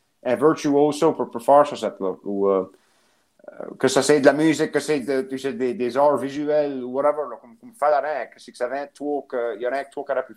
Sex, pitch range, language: male, 125-145 Hz, French